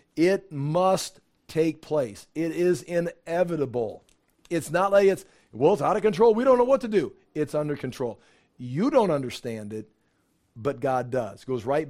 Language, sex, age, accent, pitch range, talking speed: English, male, 50-69, American, 135-165 Hz, 175 wpm